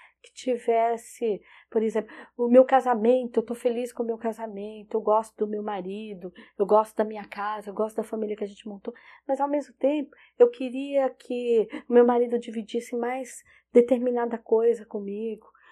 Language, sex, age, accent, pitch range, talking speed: Portuguese, female, 30-49, Brazilian, 215-275 Hz, 180 wpm